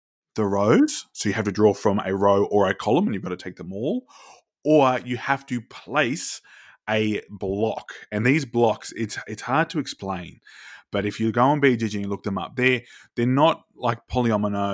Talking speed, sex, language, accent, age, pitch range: 205 wpm, male, English, Australian, 20-39, 100-125 Hz